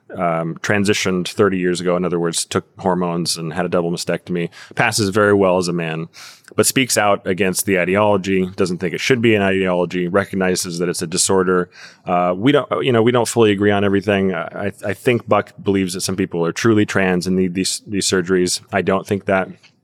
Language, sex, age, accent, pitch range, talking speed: English, male, 20-39, American, 90-105 Hz, 210 wpm